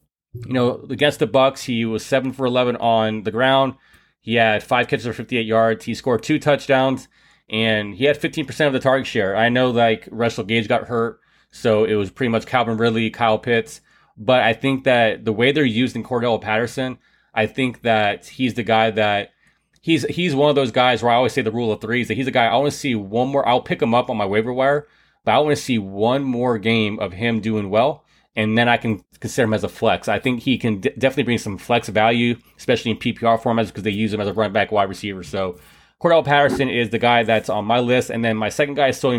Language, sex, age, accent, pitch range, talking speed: English, male, 20-39, American, 110-130 Hz, 245 wpm